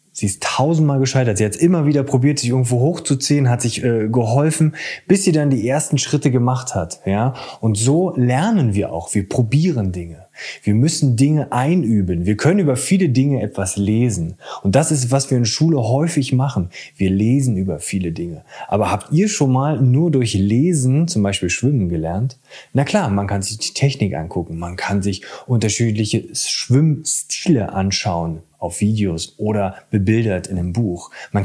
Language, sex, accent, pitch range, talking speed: German, male, German, 105-145 Hz, 175 wpm